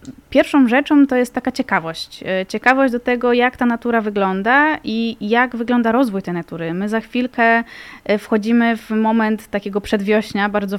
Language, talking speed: Polish, 155 wpm